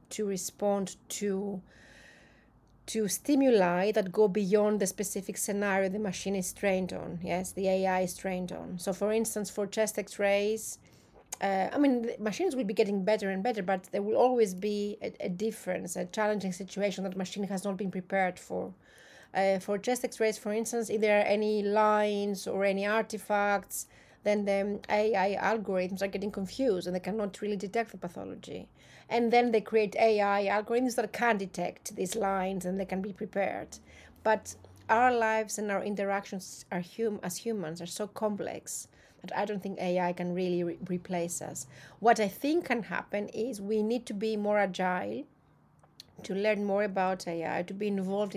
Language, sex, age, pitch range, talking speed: English, female, 30-49, 190-215 Hz, 175 wpm